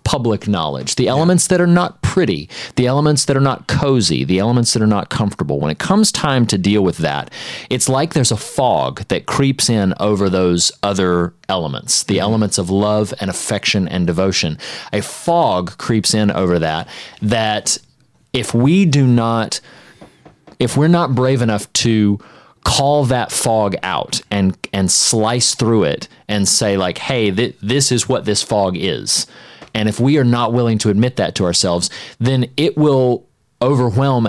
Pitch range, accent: 105-125 Hz, American